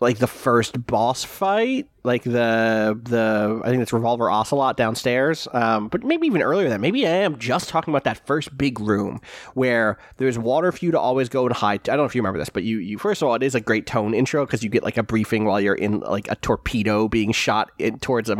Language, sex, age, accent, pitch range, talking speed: English, male, 30-49, American, 115-140 Hz, 250 wpm